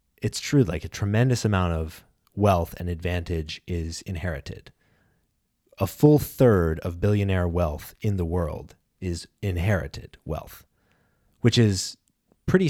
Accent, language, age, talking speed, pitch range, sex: American, English, 20-39, 130 wpm, 85-110 Hz, male